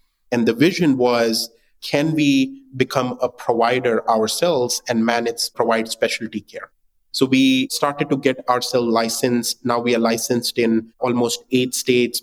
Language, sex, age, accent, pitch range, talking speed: English, male, 30-49, Indian, 115-130 Hz, 145 wpm